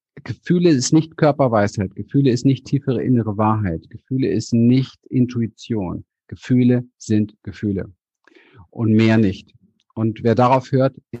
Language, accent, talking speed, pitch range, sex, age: German, German, 130 wpm, 105-130 Hz, male, 50-69